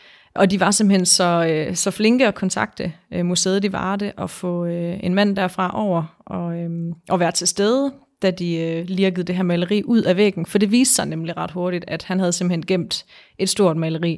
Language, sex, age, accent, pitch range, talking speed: Danish, female, 30-49, native, 170-200 Hz, 225 wpm